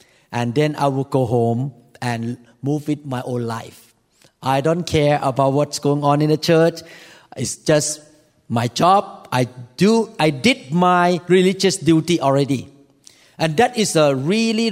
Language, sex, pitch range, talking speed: English, male, 135-175 Hz, 160 wpm